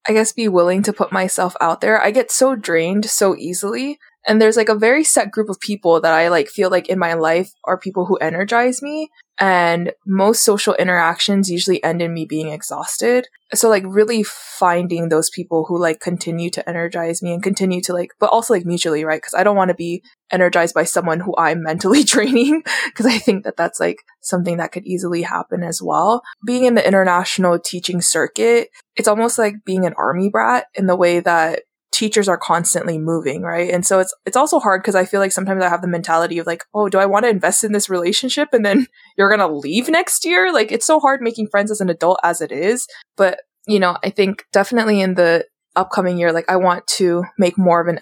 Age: 20-39